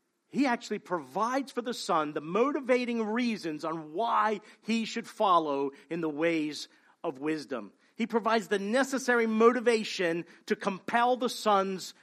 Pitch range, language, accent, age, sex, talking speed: 175-245 Hz, English, American, 40-59, male, 140 wpm